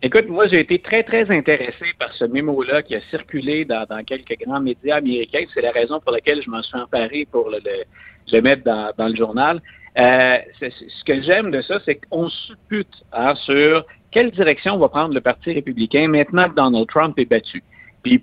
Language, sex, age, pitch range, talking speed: French, male, 50-69, 125-195 Hz, 200 wpm